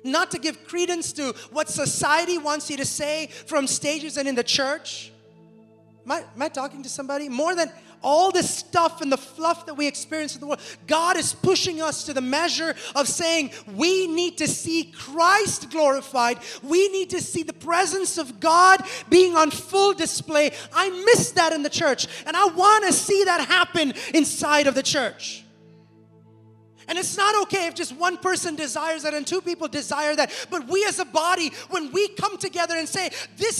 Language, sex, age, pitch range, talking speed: English, male, 20-39, 255-350 Hz, 195 wpm